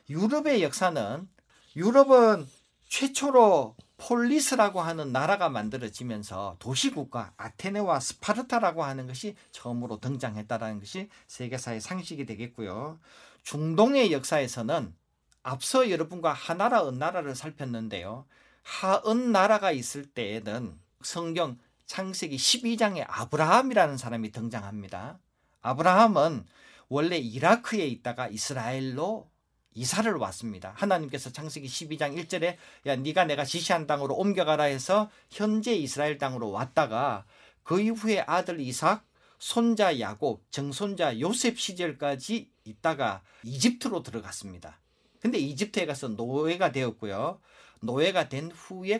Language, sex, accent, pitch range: Korean, male, native, 125-210 Hz